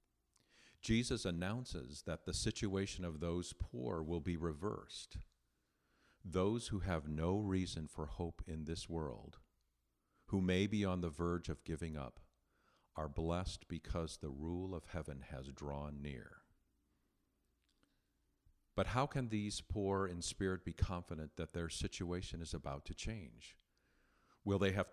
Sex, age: male, 50-69